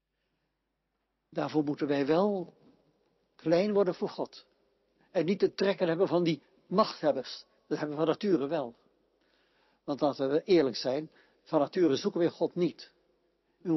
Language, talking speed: Dutch, 150 wpm